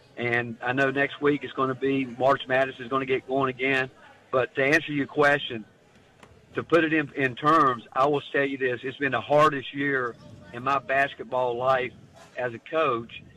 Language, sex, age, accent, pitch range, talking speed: English, male, 50-69, American, 125-150 Hz, 200 wpm